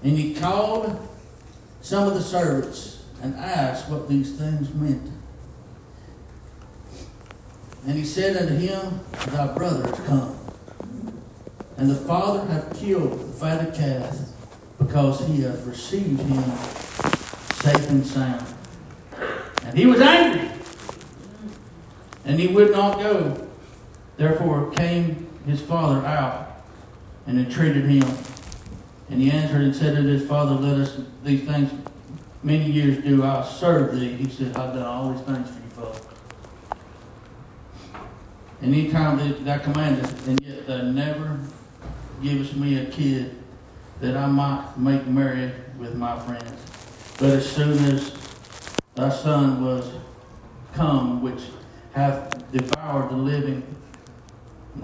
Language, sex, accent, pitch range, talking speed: English, male, American, 125-145 Hz, 130 wpm